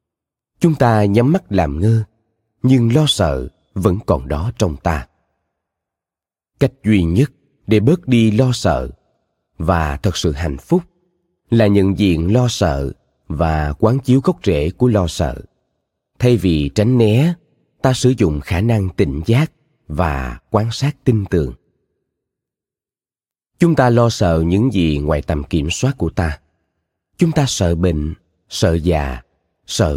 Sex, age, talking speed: male, 20-39, 150 wpm